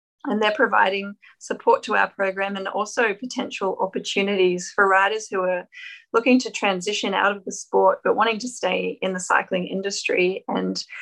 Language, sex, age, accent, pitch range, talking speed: English, female, 20-39, Australian, 185-215 Hz, 170 wpm